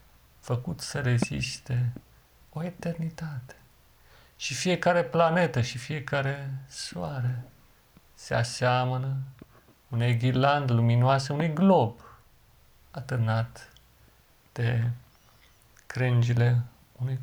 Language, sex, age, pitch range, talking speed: Romanian, male, 40-59, 120-145 Hz, 75 wpm